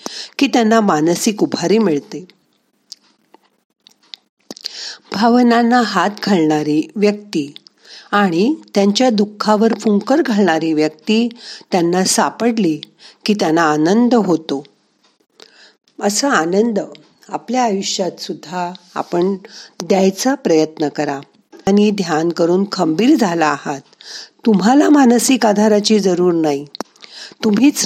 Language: Marathi